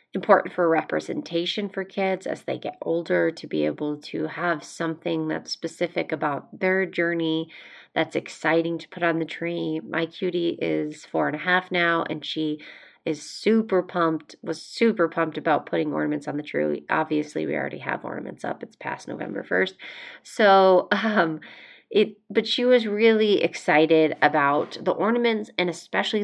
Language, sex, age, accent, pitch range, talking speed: English, female, 30-49, American, 155-190 Hz, 165 wpm